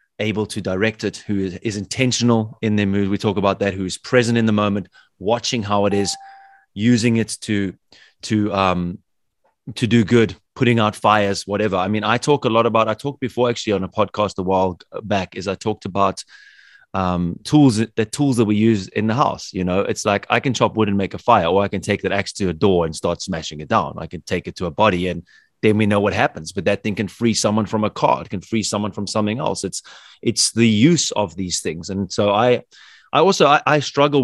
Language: English